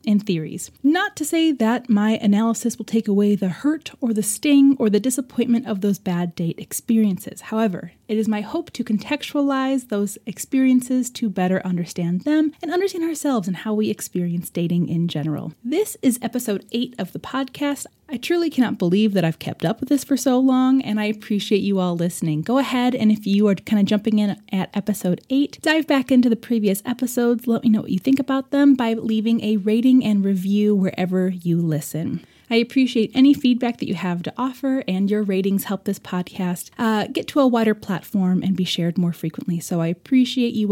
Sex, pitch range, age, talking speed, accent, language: female, 195-260 Hz, 20-39, 205 wpm, American, English